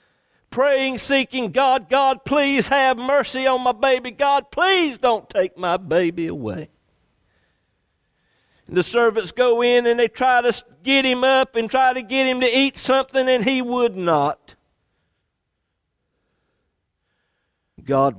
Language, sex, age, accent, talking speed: English, male, 60-79, American, 140 wpm